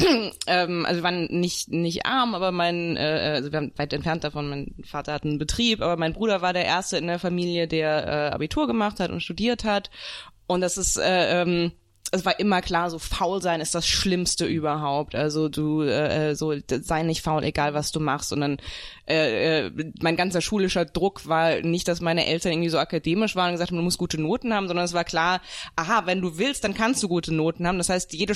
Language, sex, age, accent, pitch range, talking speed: German, female, 20-39, German, 160-200 Hz, 225 wpm